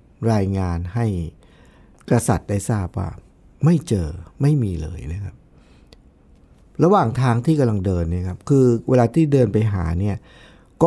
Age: 60-79